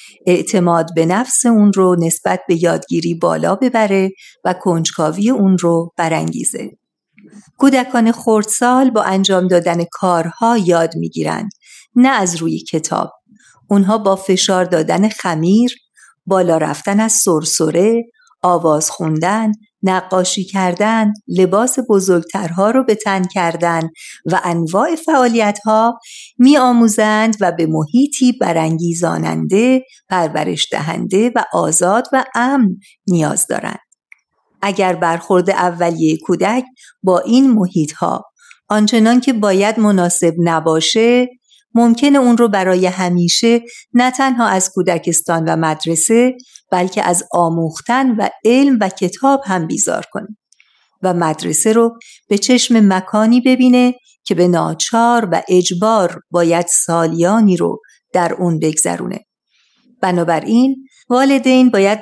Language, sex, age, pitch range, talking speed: Persian, female, 50-69, 175-235 Hz, 115 wpm